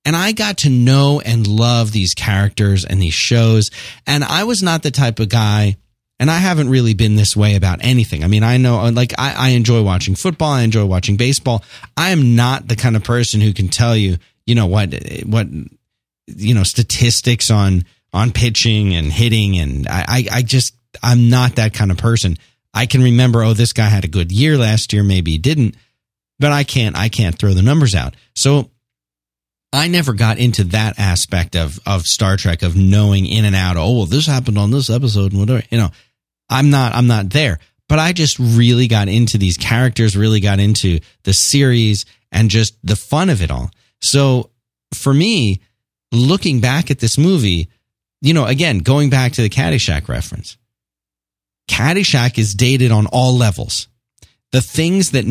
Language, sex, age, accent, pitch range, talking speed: English, male, 40-59, American, 100-125 Hz, 195 wpm